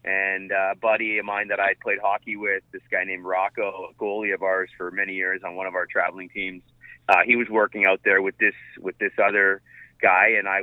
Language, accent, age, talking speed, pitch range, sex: English, American, 30-49, 230 wpm, 95-115 Hz, male